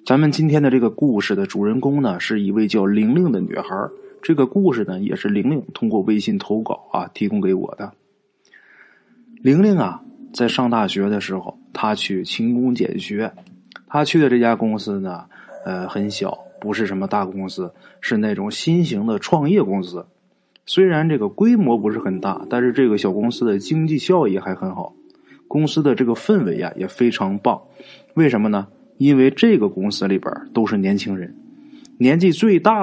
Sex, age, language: male, 20-39, Chinese